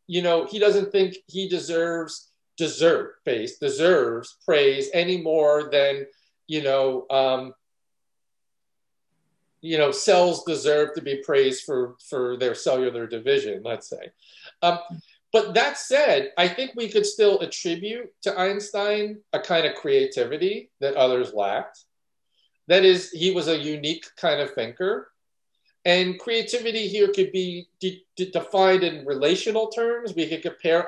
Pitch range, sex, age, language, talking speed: 155-210 Hz, male, 50-69, English, 135 wpm